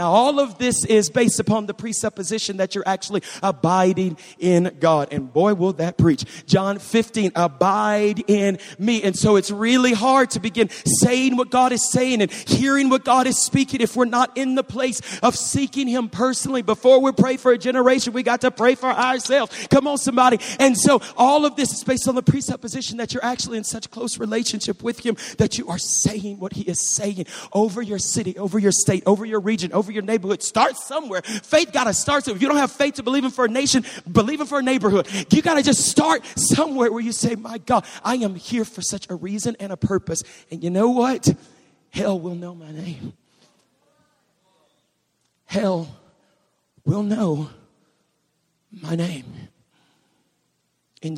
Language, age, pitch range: English, 40-59, 185-255 Hz